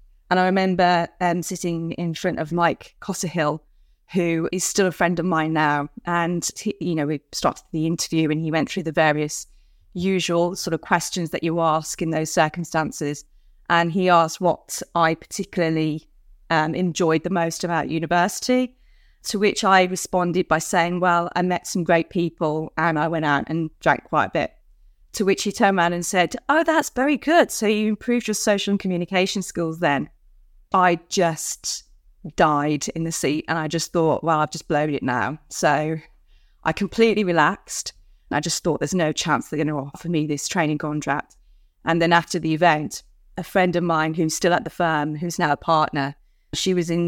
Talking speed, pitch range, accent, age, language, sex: 190 wpm, 155-180 Hz, British, 30-49, English, female